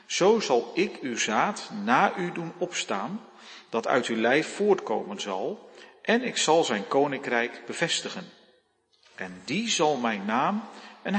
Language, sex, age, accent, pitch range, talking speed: Dutch, male, 40-59, Dutch, 135-200 Hz, 145 wpm